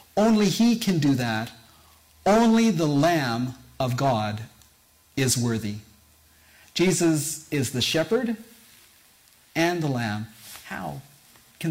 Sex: male